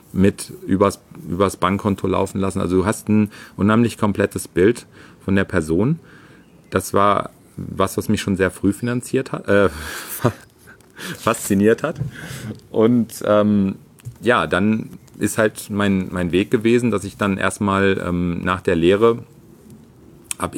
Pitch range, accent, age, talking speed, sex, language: 90-105 Hz, German, 40-59, 140 wpm, male, German